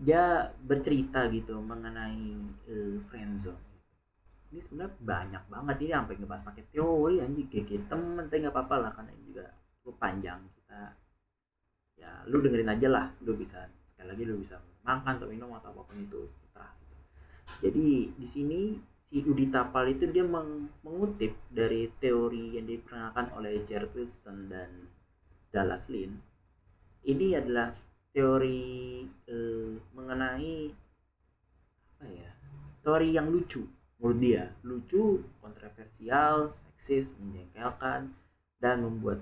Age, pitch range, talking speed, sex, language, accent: 20-39, 100-130 Hz, 125 wpm, male, Indonesian, native